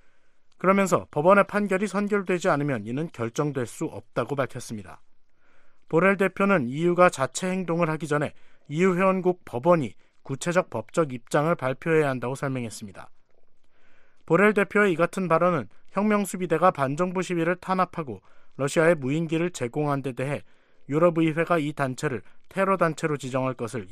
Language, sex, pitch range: Korean, male, 130-180 Hz